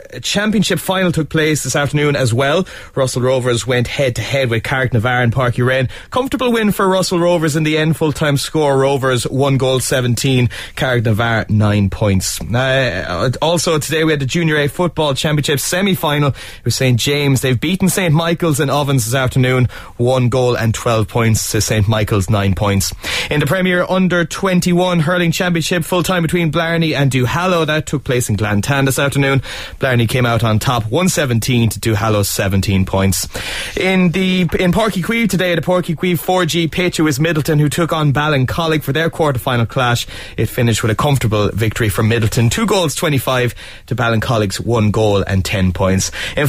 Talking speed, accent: 185 wpm, Irish